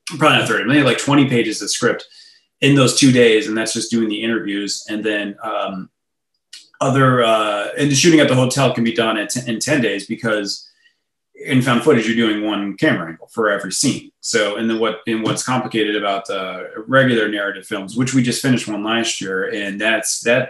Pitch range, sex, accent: 105-125 Hz, male, American